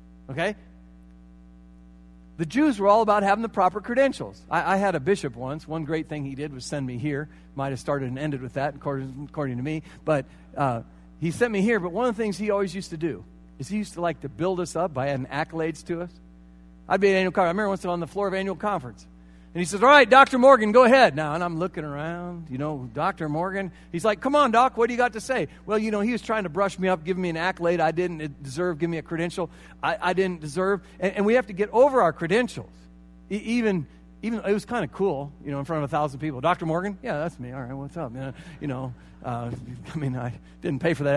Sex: male